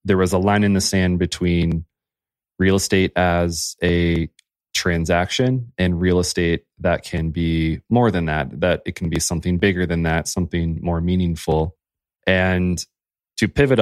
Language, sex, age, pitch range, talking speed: English, male, 20-39, 85-100 Hz, 155 wpm